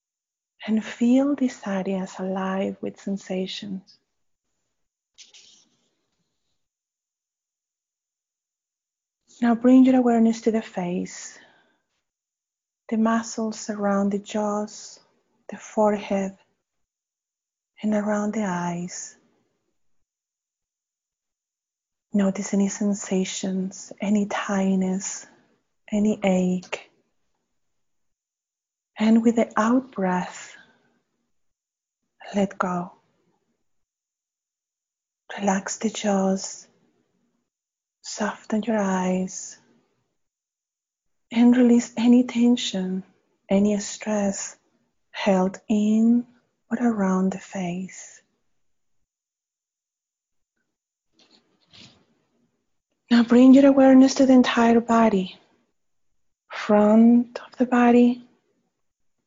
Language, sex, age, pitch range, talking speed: English, female, 30-49, 195-235 Hz, 70 wpm